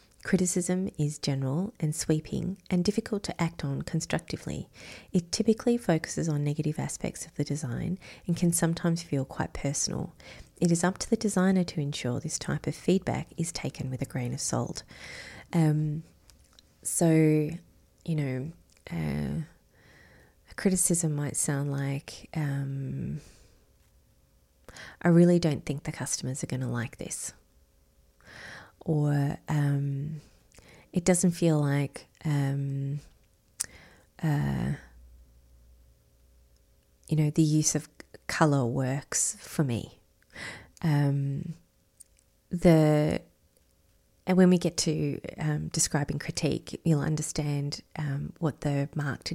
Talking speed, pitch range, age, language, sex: 120 wpm, 135-165 Hz, 30-49, English, female